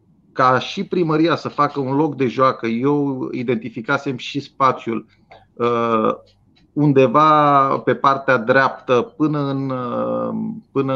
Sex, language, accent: male, Romanian, native